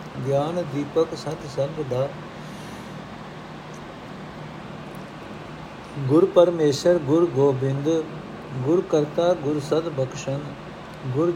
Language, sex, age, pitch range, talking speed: Punjabi, male, 60-79, 135-170 Hz, 80 wpm